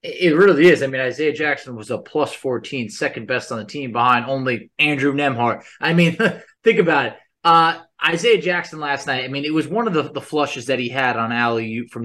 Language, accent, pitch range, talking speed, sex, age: English, American, 125-160 Hz, 225 wpm, male, 20-39